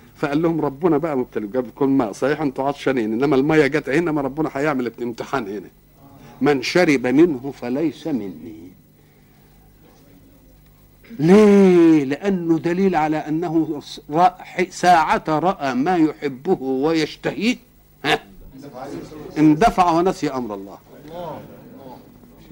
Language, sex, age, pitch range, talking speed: Arabic, male, 60-79, 130-175 Hz, 110 wpm